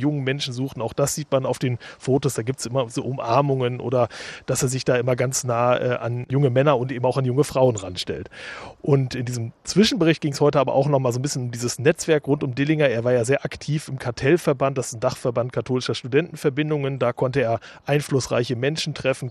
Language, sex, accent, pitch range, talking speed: German, male, German, 125-145 Hz, 225 wpm